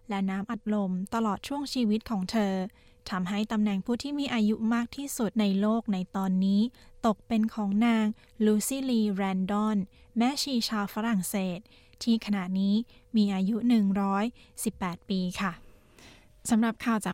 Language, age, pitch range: Thai, 20-39, 195-230 Hz